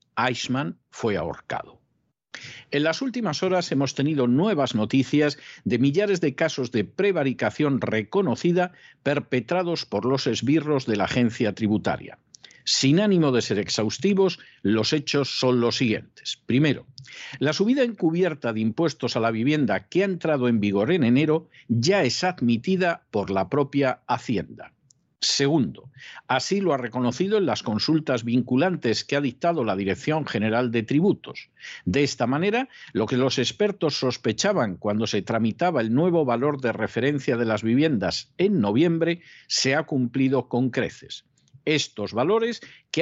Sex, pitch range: male, 120-170 Hz